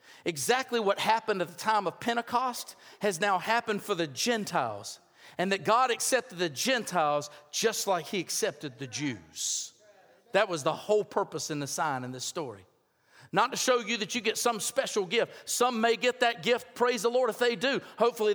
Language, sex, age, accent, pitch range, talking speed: English, male, 50-69, American, 200-250 Hz, 195 wpm